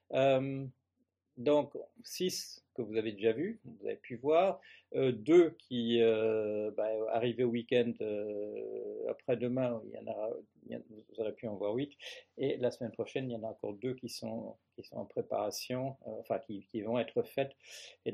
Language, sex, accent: French, male, French